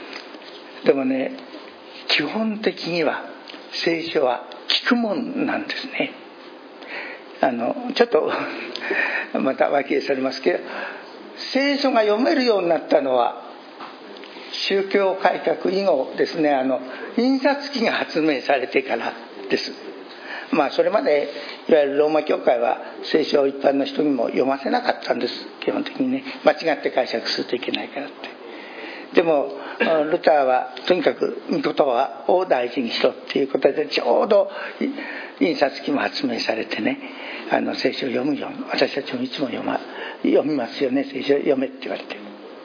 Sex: male